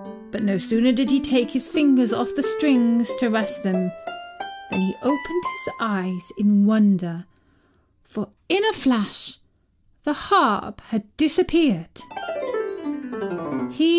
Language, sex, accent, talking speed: English, female, British, 130 wpm